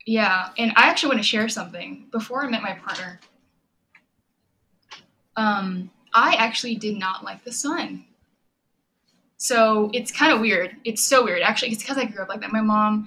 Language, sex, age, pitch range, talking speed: English, female, 10-29, 195-245 Hz, 180 wpm